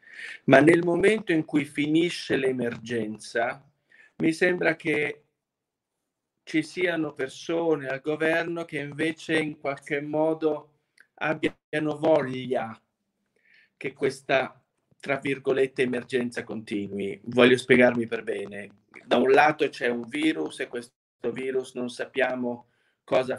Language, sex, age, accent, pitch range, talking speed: Italian, male, 40-59, native, 125-155 Hz, 115 wpm